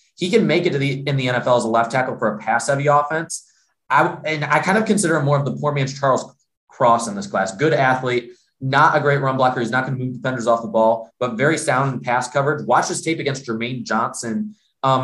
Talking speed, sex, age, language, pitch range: 250 wpm, male, 20-39, English, 125-160 Hz